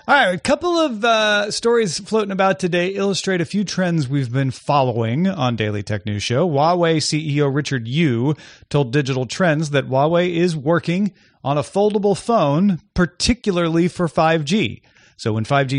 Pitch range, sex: 125-180 Hz, male